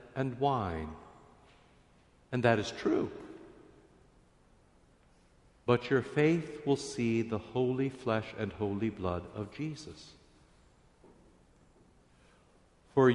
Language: English